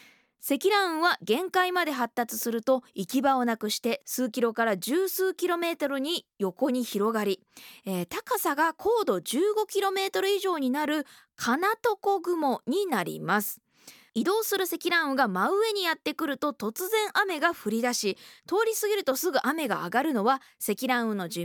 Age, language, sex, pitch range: 20-39, Japanese, female, 215-350 Hz